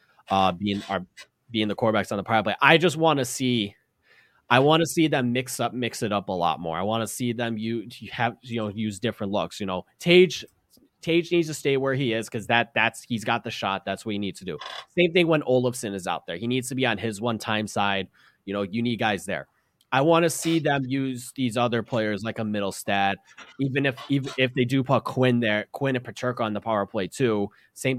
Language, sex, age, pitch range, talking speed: English, male, 30-49, 105-135 Hz, 255 wpm